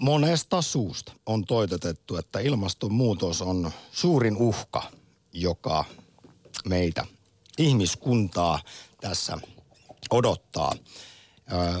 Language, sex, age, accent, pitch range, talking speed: Finnish, male, 50-69, native, 90-125 Hz, 70 wpm